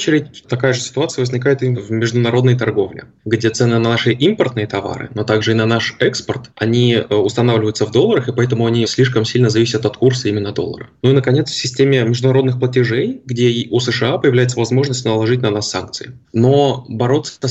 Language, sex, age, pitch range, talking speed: Russian, male, 20-39, 115-130 Hz, 185 wpm